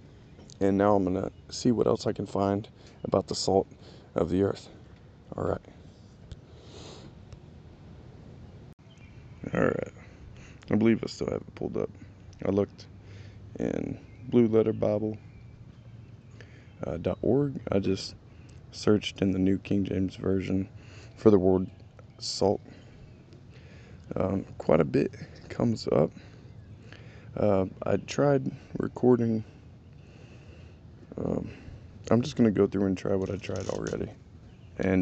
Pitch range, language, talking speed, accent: 95-110 Hz, English, 120 wpm, American